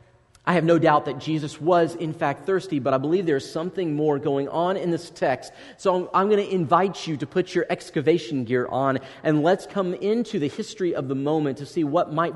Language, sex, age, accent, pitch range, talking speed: English, male, 40-59, American, 140-195 Hz, 225 wpm